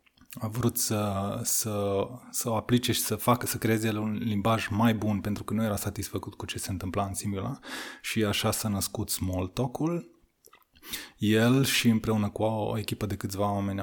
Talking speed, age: 185 wpm, 20-39